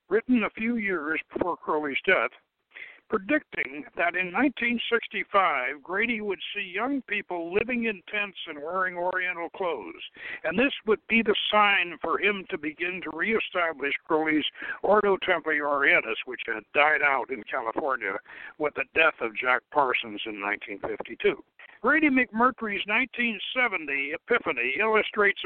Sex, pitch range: male, 175-250 Hz